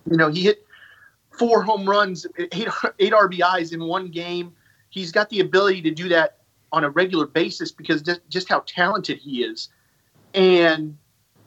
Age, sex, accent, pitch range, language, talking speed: 30-49, male, American, 150-180 Hz, English, 165 wpm